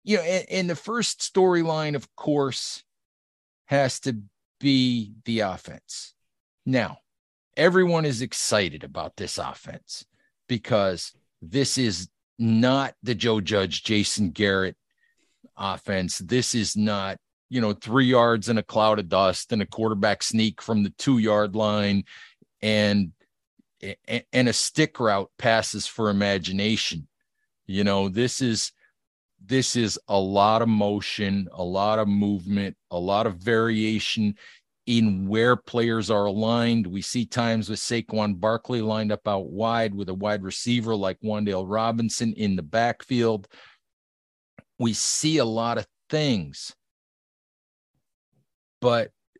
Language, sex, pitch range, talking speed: English, male, 100-120 Hz, 135 wpm